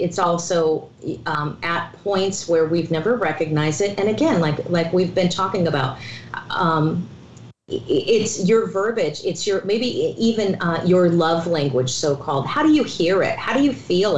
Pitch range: 155-190 Hz